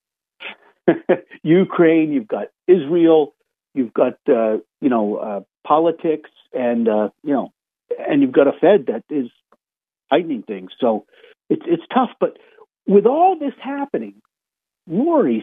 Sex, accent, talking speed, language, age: male, American, 130 wpm, English, 50-69